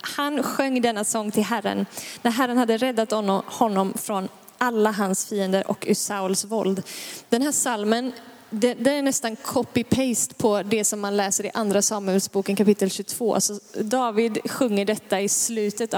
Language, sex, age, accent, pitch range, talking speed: Swedish, female, 20-39, native, 210-250 Hz, 160 wpm